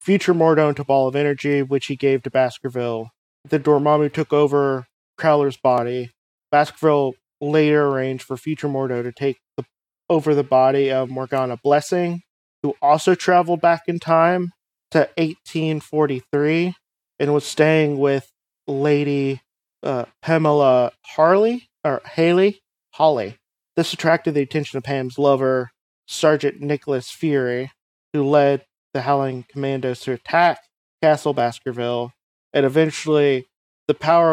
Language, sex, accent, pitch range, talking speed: English, male, American, 130-155 Hz, 130 wpm